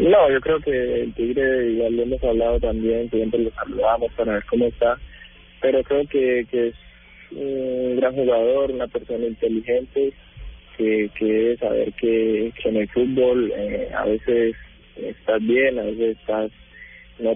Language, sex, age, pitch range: Spanish, male, 20-39, 105-125 Hz